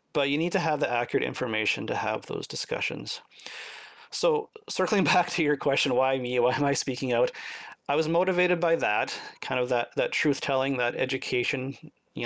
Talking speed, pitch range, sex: 185 wpm, 125-165 Hz, male